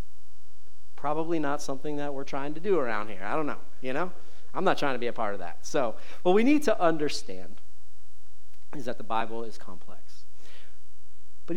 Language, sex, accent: English, male, American